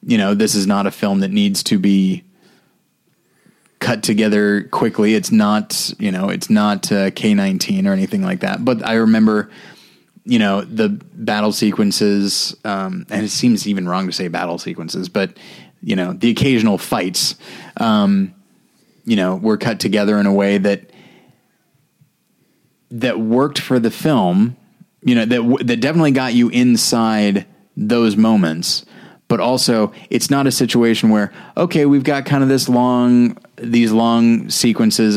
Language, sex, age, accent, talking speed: English, male, 20-39, American, 160 wpm